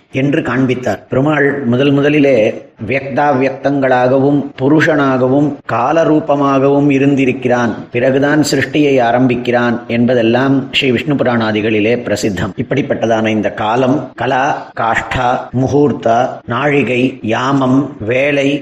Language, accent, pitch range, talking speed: Tamil, native, 130-145 Hz, 85 wpm